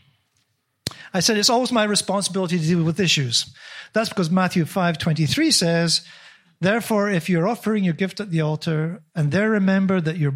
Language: English